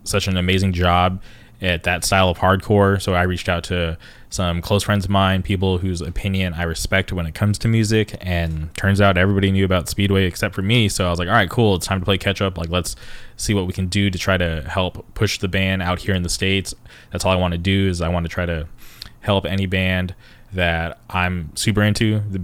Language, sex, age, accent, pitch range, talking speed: English, male, 20-39, American, 90-100 Hz, 245 wpm